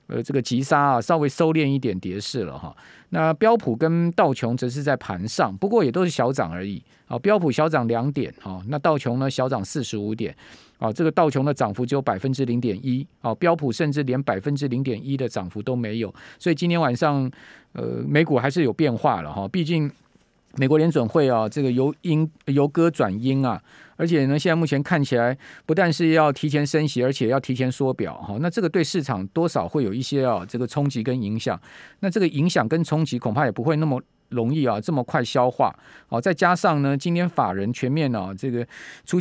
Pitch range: 125-160 Hz